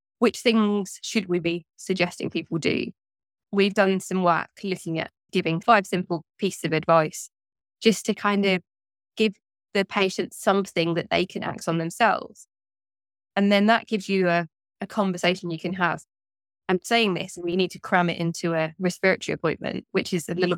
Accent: British